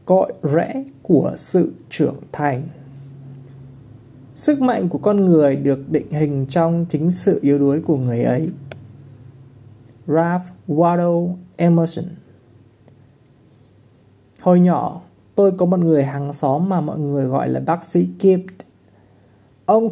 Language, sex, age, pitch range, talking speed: Vietnamese, male, 20-39, 135-185 Hz, 125 wpm